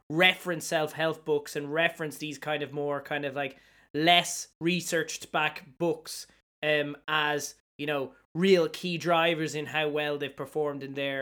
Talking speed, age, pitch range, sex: 160 wpm, 20-39, 140-160 Hz, male